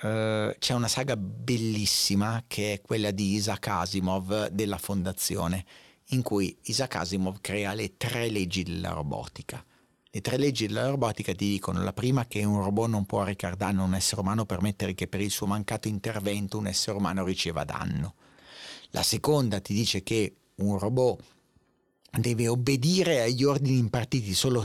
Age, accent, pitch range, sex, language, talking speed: 40-59, native, 100-125 Hz, male, Italian, 165 wpm